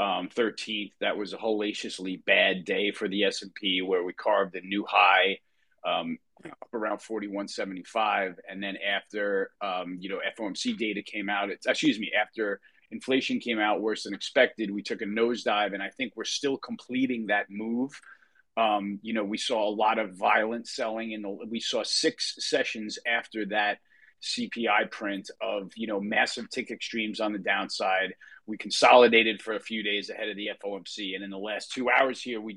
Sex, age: male, 30-49